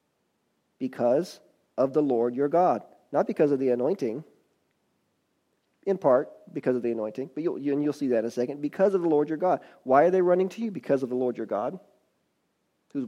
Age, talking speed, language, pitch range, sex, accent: 40-59, 210 wpm, English, 125-155 Hz, male, American